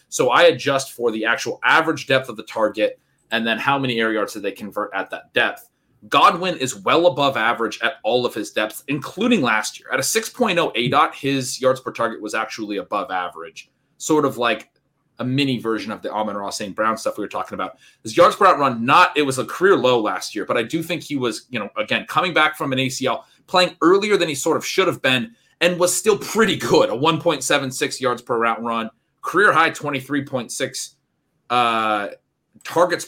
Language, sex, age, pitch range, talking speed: English, male, 30-49, 120-160 Hz, 210 wpm